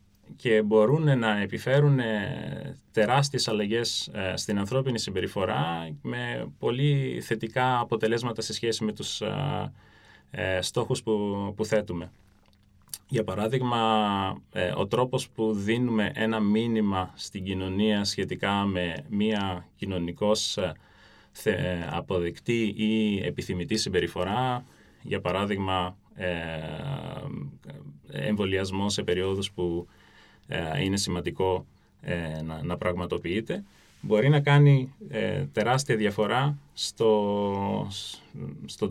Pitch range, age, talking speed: 95-115 Hz, 20-39, 85 wpm